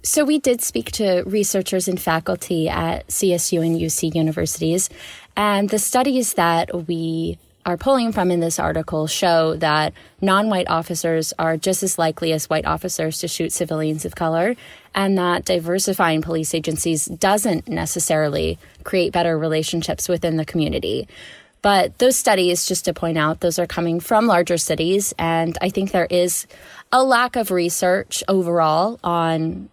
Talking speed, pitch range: 155 wpm, 165-195 Hz